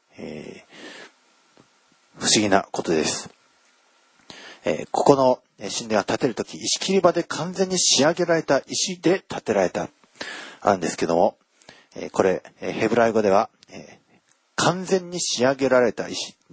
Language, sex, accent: Japanese, male, native